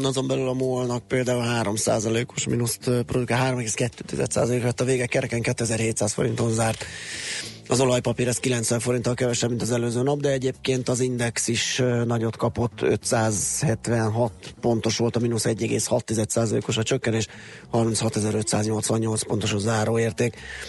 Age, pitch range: 20-39, 110-125 Hz